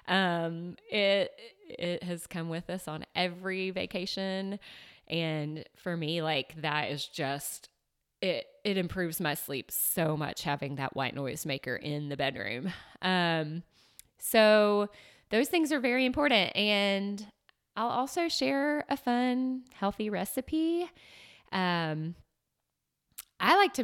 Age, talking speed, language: 20-39, 125 wpm, English